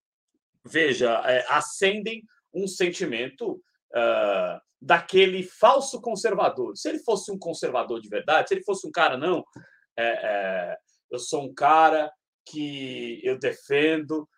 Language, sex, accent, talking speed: Portuguese, male, Brazilian, 115 wpm